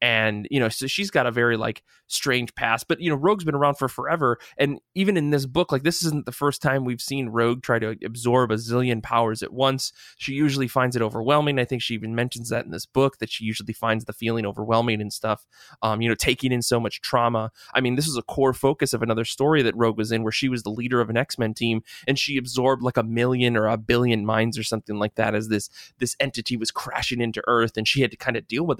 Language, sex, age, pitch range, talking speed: English, male, 20-39, 115-135 Hz, 260 wpm